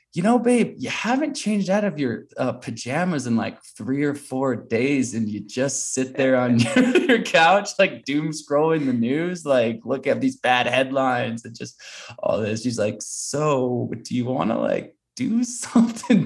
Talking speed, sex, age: 190 wpm, male, 20-39